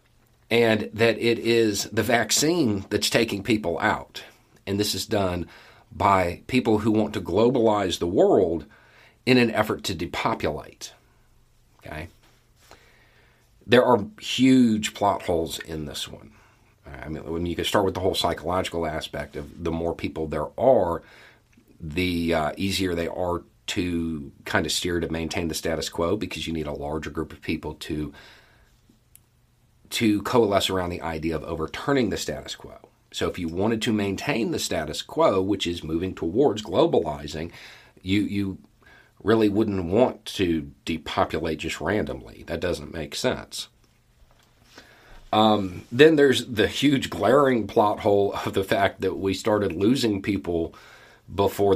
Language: English